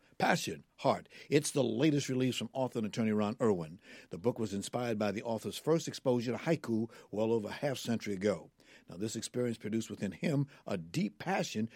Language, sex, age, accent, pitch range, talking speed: English, male, 60-79, American, 110-140 Hz, 195 wpm